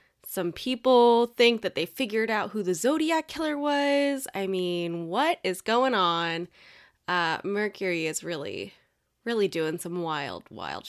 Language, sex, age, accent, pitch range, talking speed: English, female, 20-39, American, 170-215 Hz, 150 wpm